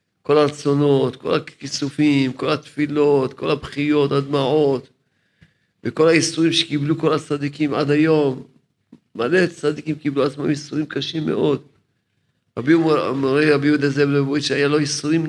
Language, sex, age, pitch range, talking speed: Hebrew, male, 50-69, 135-155 Hz, 120 wpm